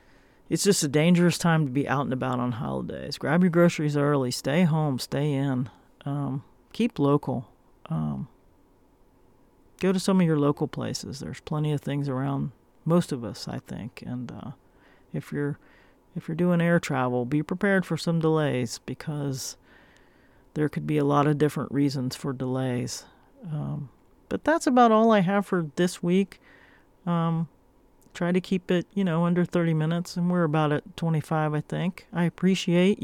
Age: 40-59